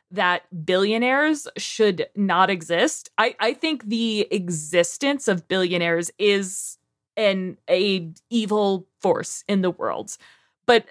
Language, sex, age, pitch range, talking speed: English, female, 20-39, 185-230 Hz, 110 wpm